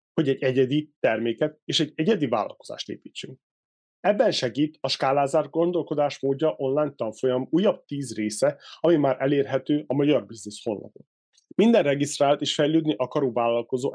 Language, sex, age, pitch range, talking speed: Hungarian, male, 30-49, 130-160 Hz, 140 wpm